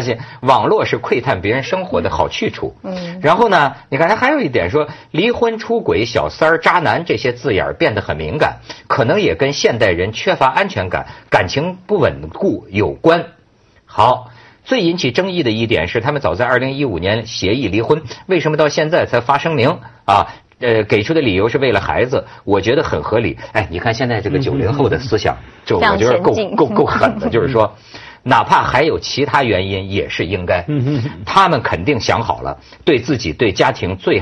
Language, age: Chinese, 50-69